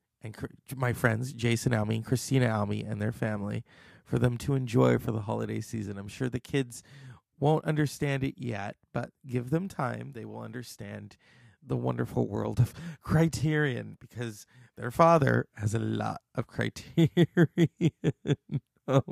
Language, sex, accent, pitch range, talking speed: English, male, American, 110-140 Hz, 150 wpm